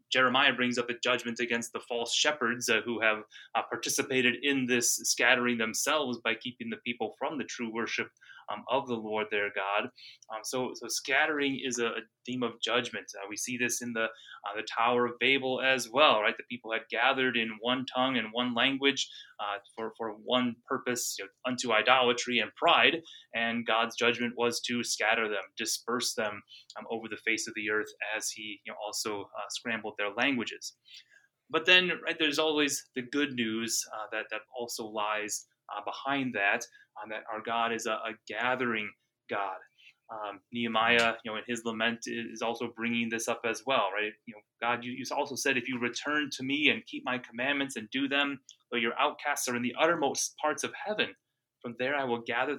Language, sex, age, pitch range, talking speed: English, male, 20-39, 115-130 Hz, 200 wpm